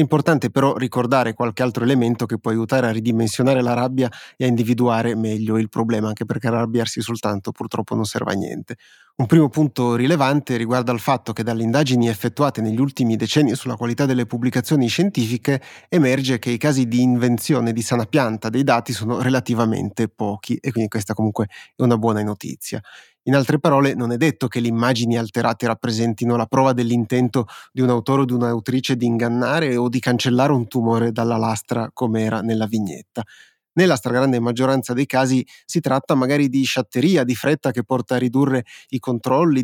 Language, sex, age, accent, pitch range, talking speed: Italian, male, 30-49, native, 115-130 Hz, 180 wpm